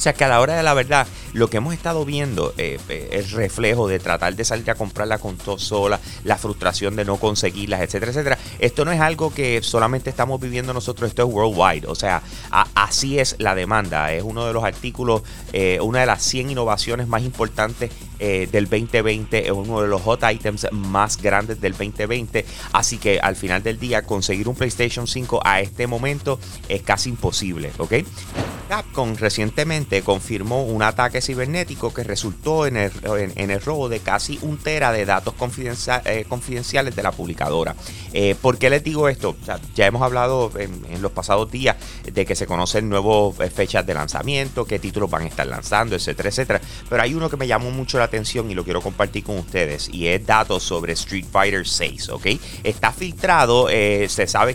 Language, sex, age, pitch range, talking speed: Spanish, male, 30-49, 100-125 Hz, 195 wpm